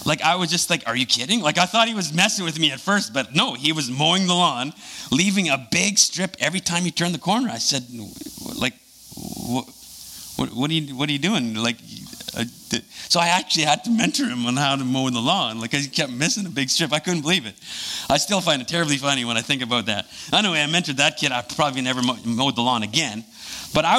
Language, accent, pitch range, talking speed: English, American, 130-180 Hz, 255 wpm